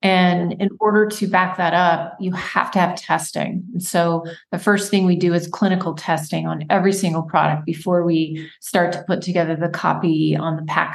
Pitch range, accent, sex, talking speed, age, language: 165-190 Hz, American, female, 195 wpm, 30-49, English